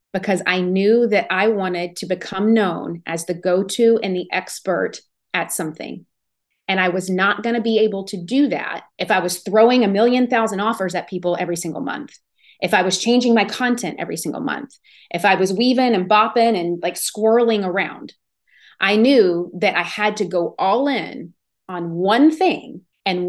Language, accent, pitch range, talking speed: English, American, 185-235 Hz, 190 wpm